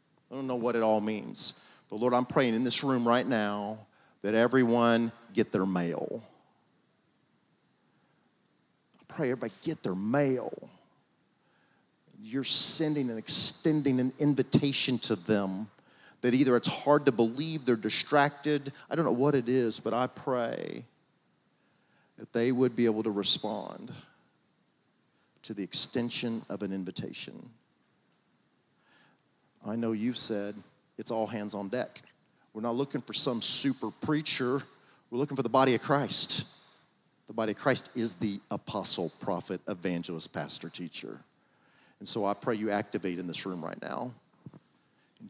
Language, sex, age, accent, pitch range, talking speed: English, male, 40-59, American, 105-135 Hz, 145 wpm